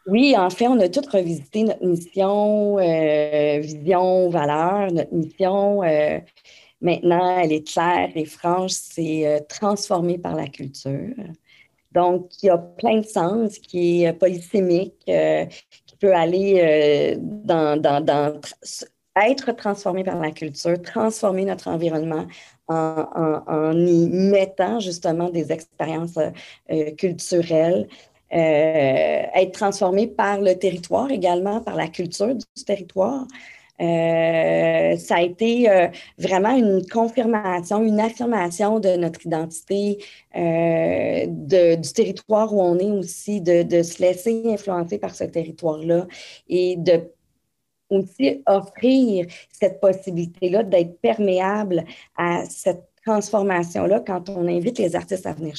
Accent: Canadian